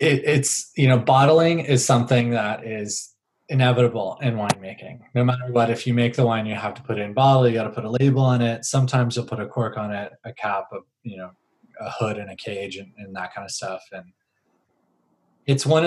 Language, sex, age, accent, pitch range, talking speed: English, male, 20-39, American, 105-130 Hz, 230 wpm